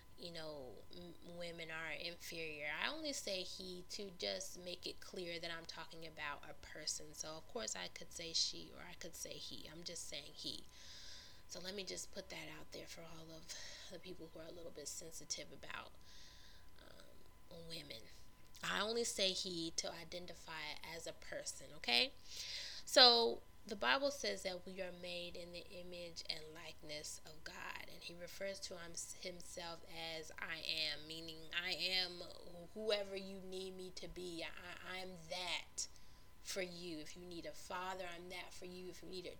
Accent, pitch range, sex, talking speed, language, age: American, 160-185 Hz, female, 180 wpm, English, 20-39